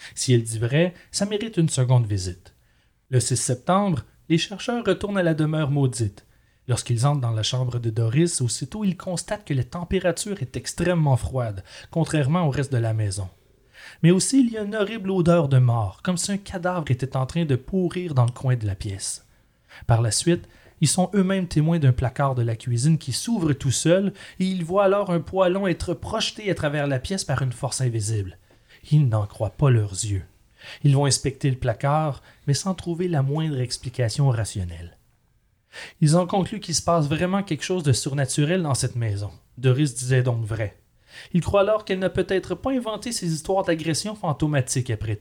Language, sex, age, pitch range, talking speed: French, male, 30-49, 120-175 Hz, 195 wpm